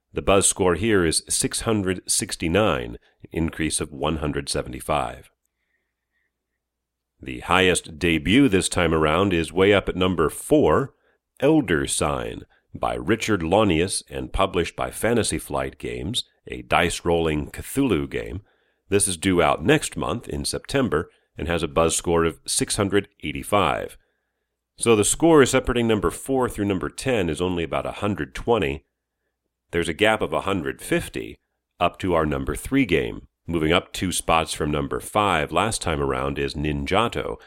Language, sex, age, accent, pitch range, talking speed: English, male, 40-59, American, 75-100 Hz, 145 wpm